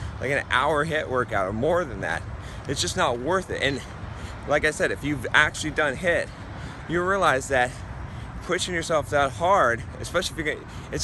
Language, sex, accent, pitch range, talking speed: English, male, American, 120-170 Hz, 190 wpm